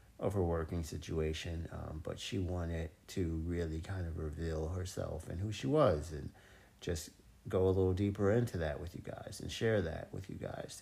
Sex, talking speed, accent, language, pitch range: male, 195 wpm, American, English, 85-105 Hz